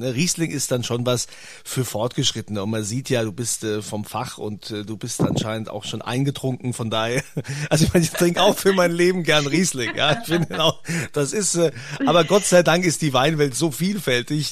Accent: German